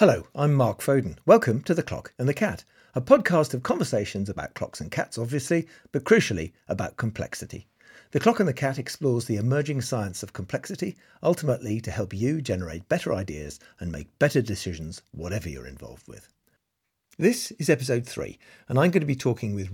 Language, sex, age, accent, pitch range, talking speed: English, male, 50-69, British, 95-150 Hz, 185 wpm